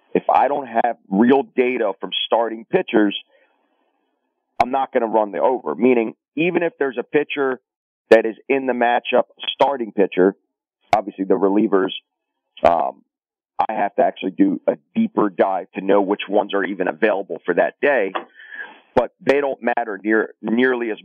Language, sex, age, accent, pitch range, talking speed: English, male, 40-59, American, 100-130 Hz, 165 wpm